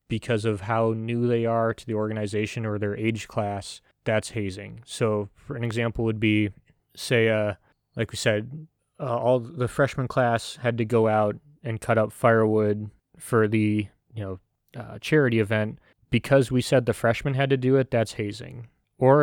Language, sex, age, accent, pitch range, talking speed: English, male, 20-39, American, 105-125 Hz, 180 wpm